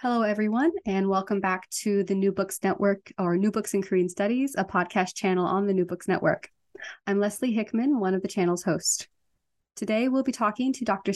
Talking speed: 205 wpm